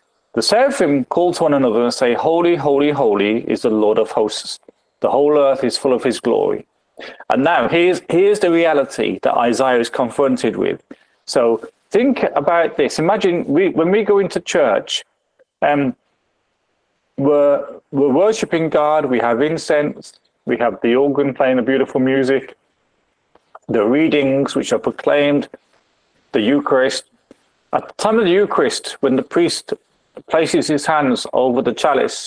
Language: English